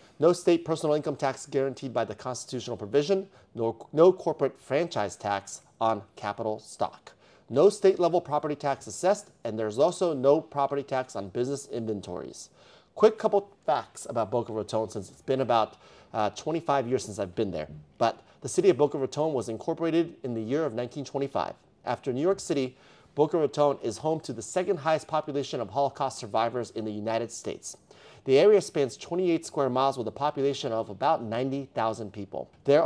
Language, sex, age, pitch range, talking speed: English, male, 30-49, 115-155 Hz, 175 wpm